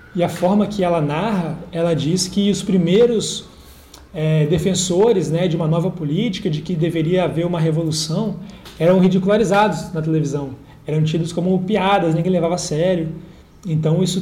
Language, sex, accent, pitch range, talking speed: Portuguese, male, Brazilian, 155-190 Hz, 160 wpm